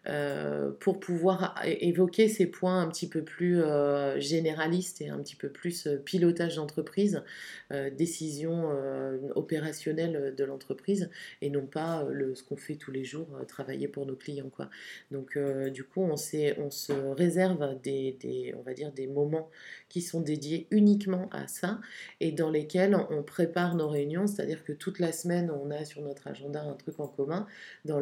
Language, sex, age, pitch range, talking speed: French, female, 30-49, 145-175 Hz, 180 wpm